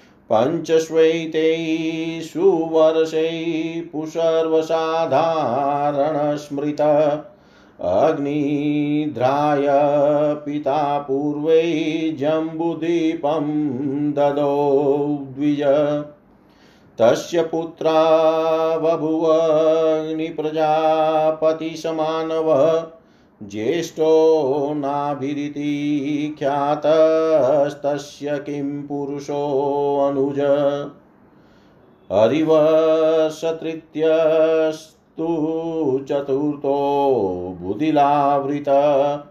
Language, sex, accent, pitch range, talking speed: Hindi, male, native, 145-160 Hz, 35 wpm